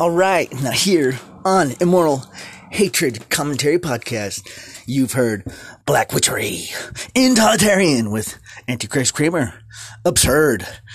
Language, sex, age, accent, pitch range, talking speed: English, male, 30-49, American, 115-165 Hz, 95 wpm